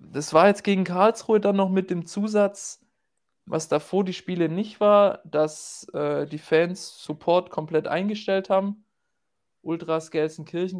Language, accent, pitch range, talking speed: German, German, 150-180 Hz, 145 wpm